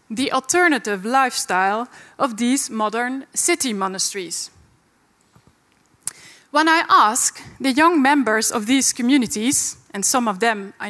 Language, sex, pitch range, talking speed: Dutch, female, 225-280 Hz, 120 wpm